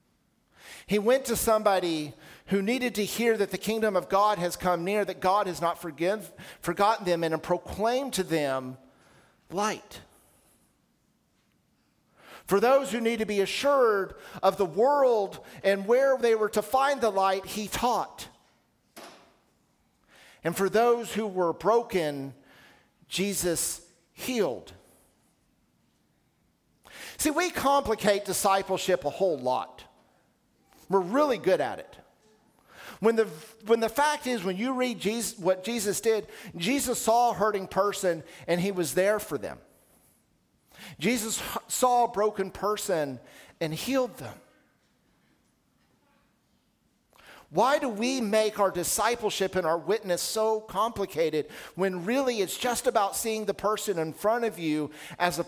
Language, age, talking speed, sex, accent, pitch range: English, 50-69, 135 wpm, male, American, 175-225 Hz